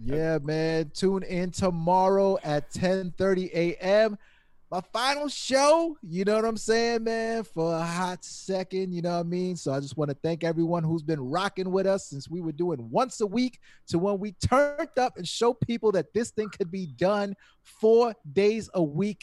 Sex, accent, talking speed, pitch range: male, American, 195 wpm, 150-200 Hz